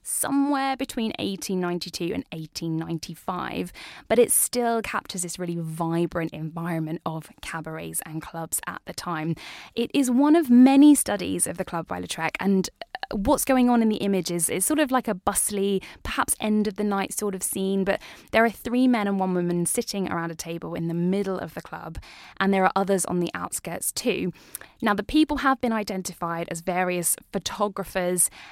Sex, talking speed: female, 185 wpm